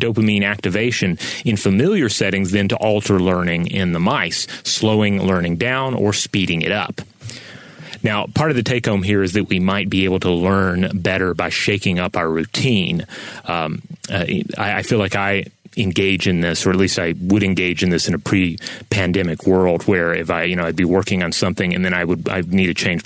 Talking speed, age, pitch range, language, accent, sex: 205 wpm, 30-49, 90-105 Hz, English, American, male